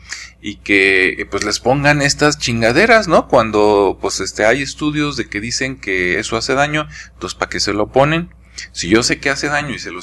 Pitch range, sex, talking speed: 95-130 Hz, male, 210 wpm